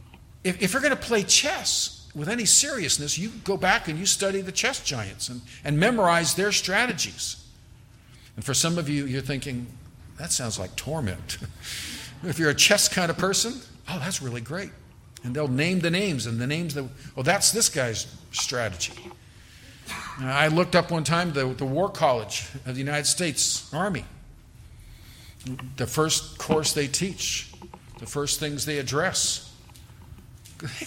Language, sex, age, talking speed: English, male, 50-69, 165 wpm